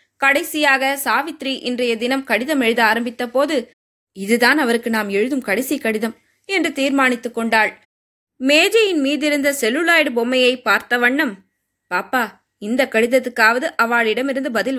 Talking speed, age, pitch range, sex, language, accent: 120 wpm, 20-39, 225-280 Hz, female, Tamil, native